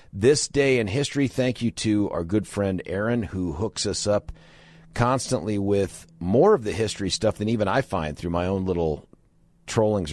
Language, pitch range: English, 90-110 Hz